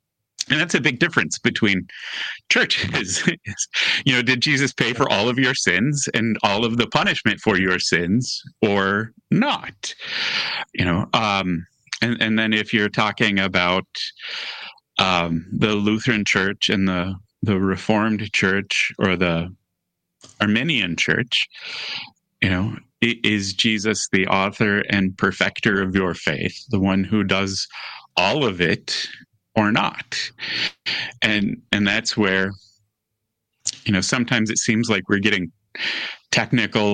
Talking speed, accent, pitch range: 135 wpm, American, 95-115 Hz